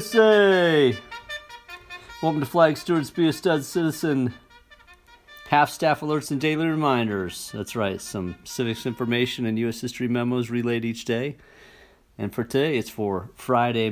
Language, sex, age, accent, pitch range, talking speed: English, male, 50-69, American, 100-130 Hz, 140 wpm